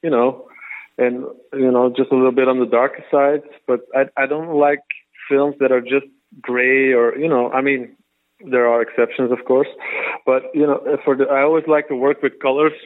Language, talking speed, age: English, 210 wpm, 20-39